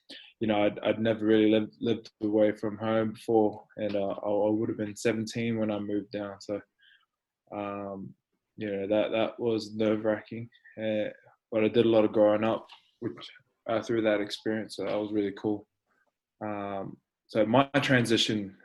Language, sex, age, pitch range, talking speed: English, male, 20-39, 105-115 Hz, 175 wpm